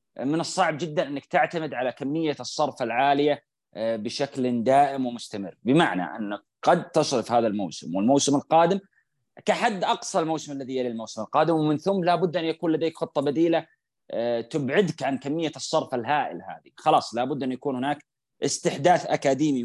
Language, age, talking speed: Arabic, 30-49, 145 wpm